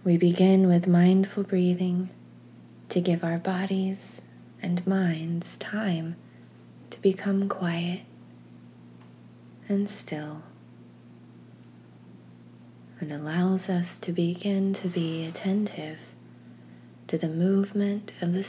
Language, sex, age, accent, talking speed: English, female, 20-39, American, 95 wpm